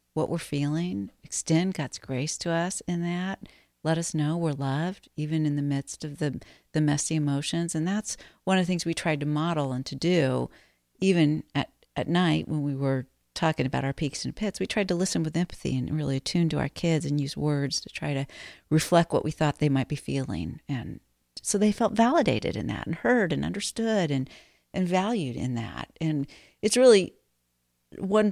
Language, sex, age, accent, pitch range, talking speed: English, female, 50-69, American, 145-190 Hz, 205 wpm